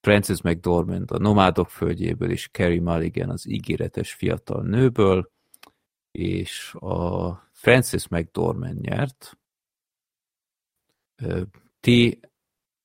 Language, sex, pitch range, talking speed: Hungarian, male, 85-105 Hz, 85 wpm